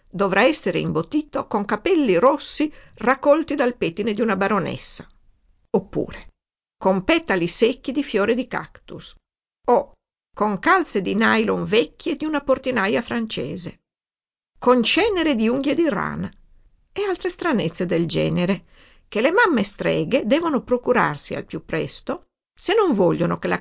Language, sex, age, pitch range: Italian, female, 50-69, 195-310 Hz